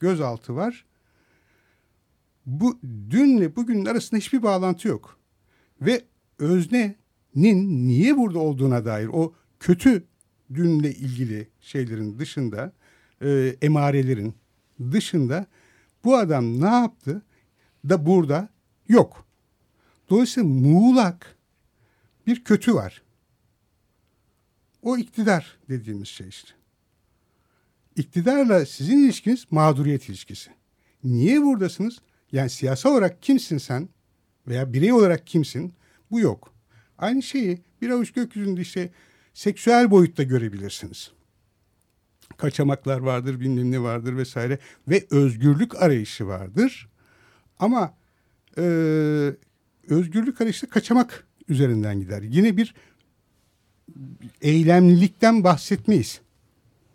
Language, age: Turkish, 60-79